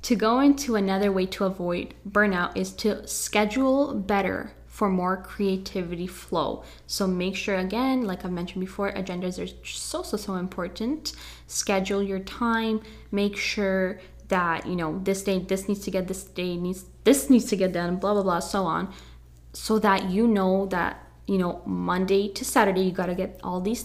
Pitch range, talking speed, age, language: 175-205 Hz, 185 wpm, 10-29, English